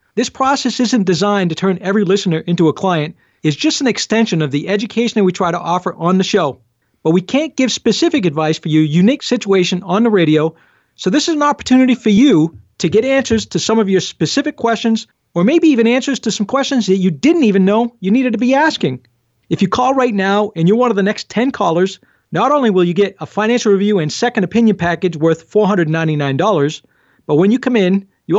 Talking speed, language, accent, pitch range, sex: 220 wpm, English, American, 175-230 Hz, male